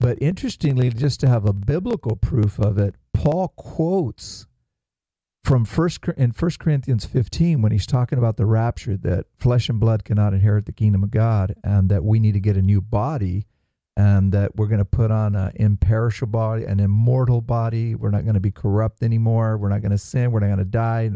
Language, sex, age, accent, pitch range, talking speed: English, male, 50-69, American, 100-125 Hz, 200 wpm